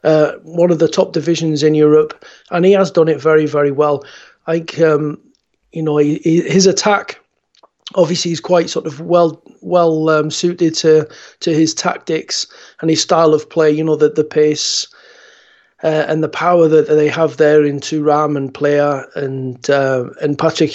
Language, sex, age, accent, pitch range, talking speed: English, male, 30-49, British, 150-175 Hz, 185 wpm